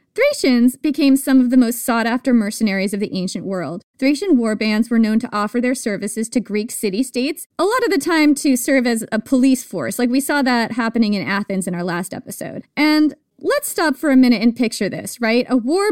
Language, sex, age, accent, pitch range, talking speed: English, female, 30-49, American, 225-285 Hz, 220 wpm